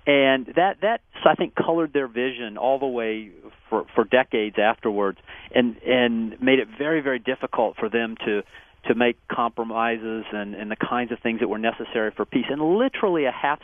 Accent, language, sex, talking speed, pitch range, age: American, English, male, 190 wpm, 115-155 Hz, 40-59